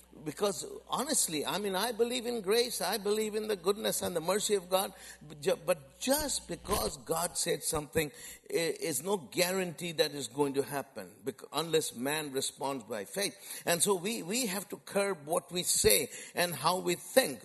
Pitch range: 140-220 Hz